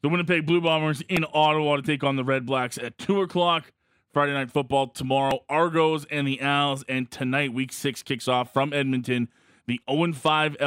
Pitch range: 115-145 Hz